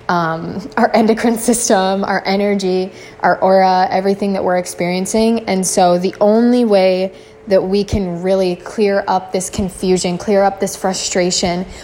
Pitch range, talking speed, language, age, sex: 175-200 Hz, 145 wpm, English, 20-39, female